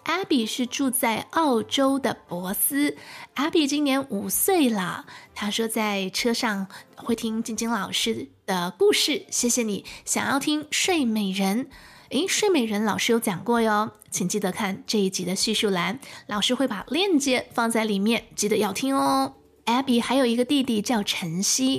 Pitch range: 215-310 Hz